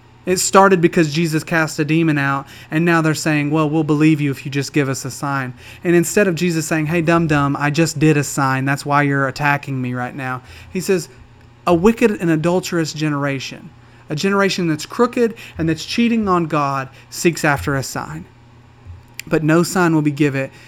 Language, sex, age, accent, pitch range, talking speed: English, male, 30-49, American, 140-180 Hz, 200 wpm